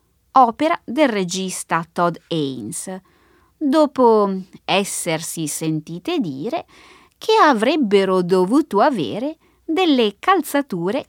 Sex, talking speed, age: female, 80 wpm, 20-39